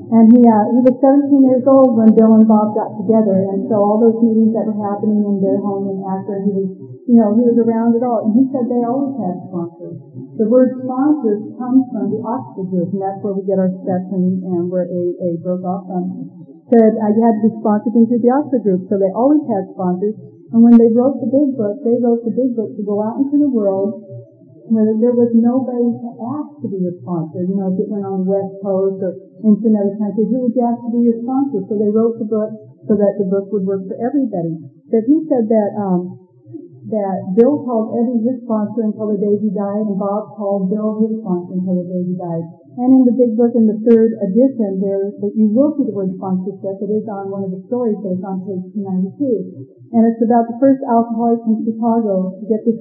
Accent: American